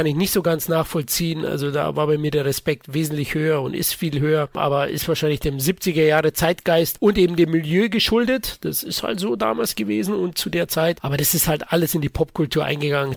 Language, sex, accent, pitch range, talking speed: German, male, German, 150-185 Hz, 230 wpm